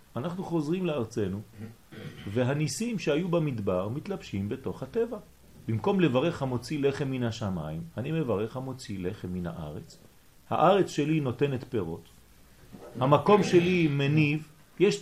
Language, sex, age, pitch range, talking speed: French, male, 40-59, 105-160 Hz, 110 wpm